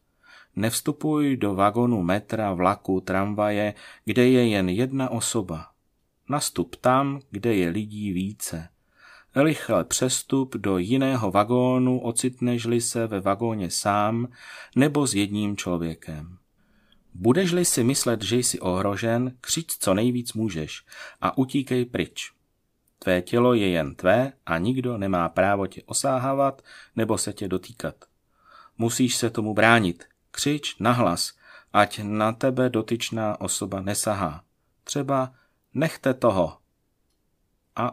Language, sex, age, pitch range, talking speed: Czech, male, 30-49, 100-125 Hz, 120 wpm